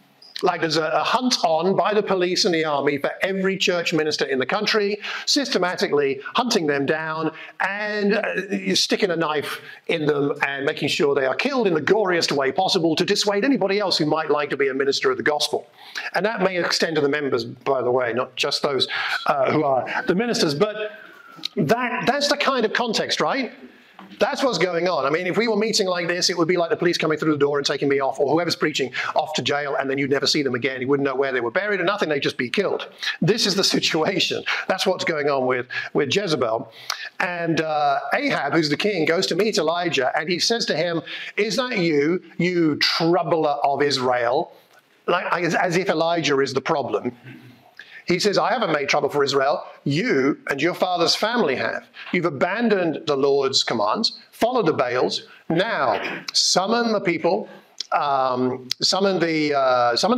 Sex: male